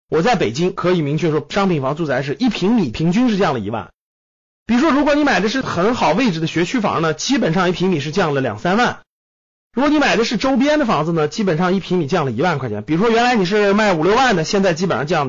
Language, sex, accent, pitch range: Chinese, male, native, 165-240 Hz